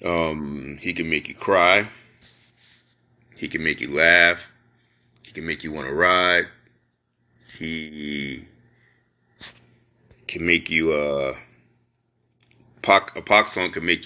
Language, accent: English, American